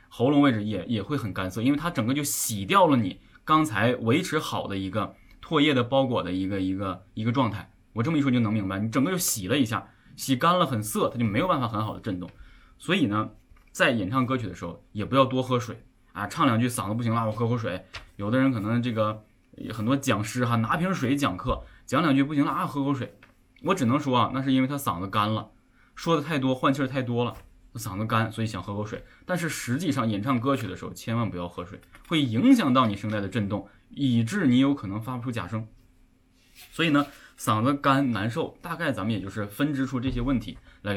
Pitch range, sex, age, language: 105-135 Hz, male, 20-39, Chinese